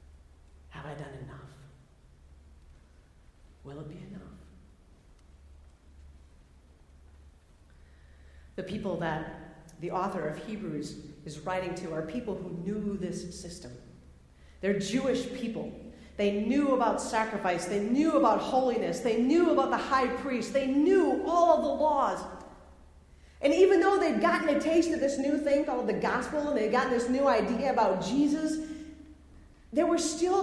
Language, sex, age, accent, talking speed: English, female, 40-59, American, 140 wpm